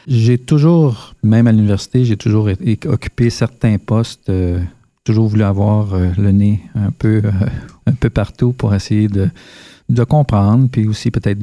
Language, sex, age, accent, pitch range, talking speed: French, male, 40-59, Canadian, 100-115 Hz, 170 wpm